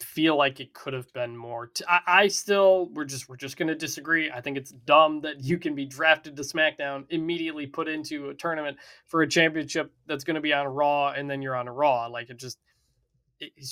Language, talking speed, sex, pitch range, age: English, 225 wpm, male, 135-170 Hz, 20-39